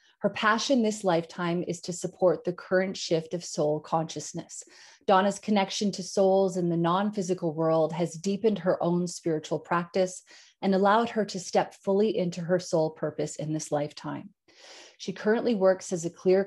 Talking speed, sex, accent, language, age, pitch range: 170 wpm, female, American, English, 30-49, 165-195 Hz